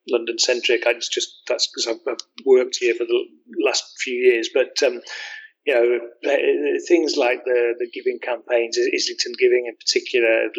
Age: 30-49